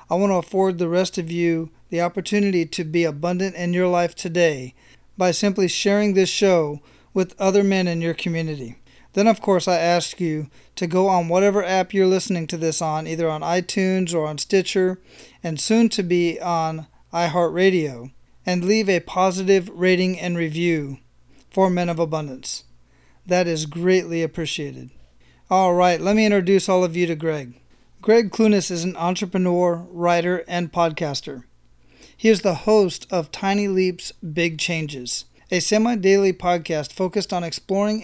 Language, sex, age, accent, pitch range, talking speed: English, male, 40-59, American, 165-190 Hz, 165 wpm